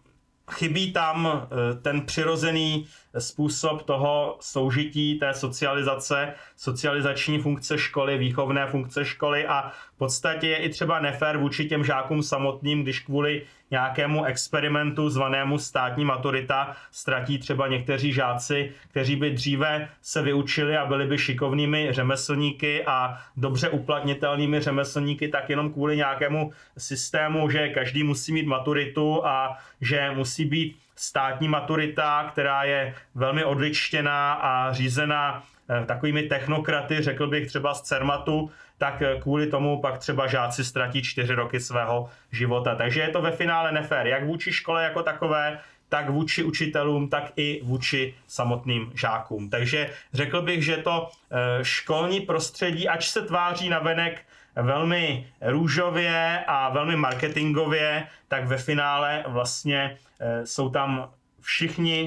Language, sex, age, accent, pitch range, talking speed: Czech, male, 30-49, native, 135-155 Hz, 130 wpm